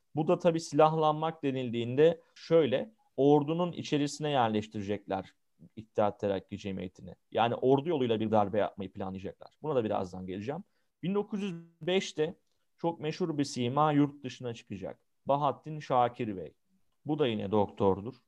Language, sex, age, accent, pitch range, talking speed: Turkish, male, 40-59, native, 115-155 Hz, 125 wpm